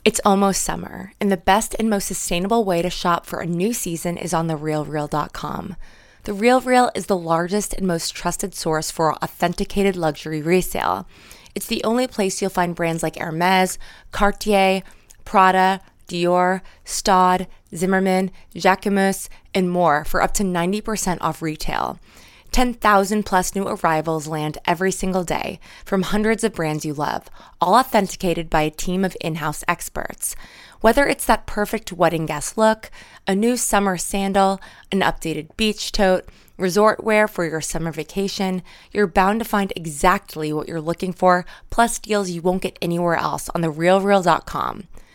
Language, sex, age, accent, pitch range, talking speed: English, female, 20-39, American, 170-205 Hz, 150 wpm